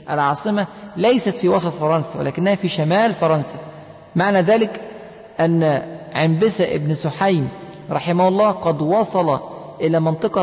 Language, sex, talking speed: Arabic, male, 120 wpm